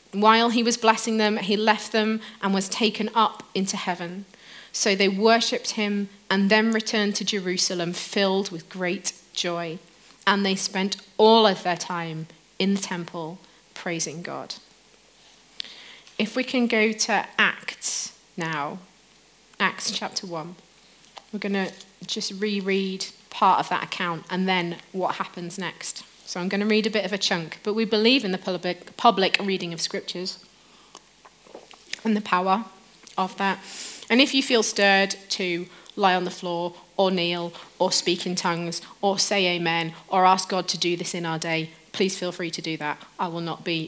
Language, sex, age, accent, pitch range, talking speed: English, female, 30-49, British, 175-210 Hz, 170 wpm